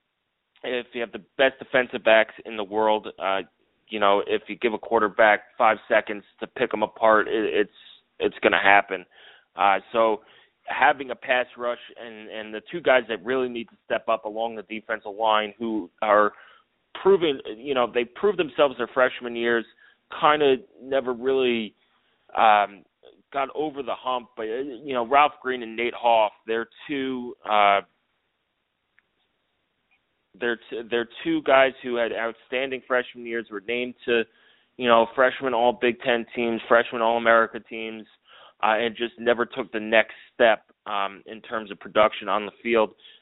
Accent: American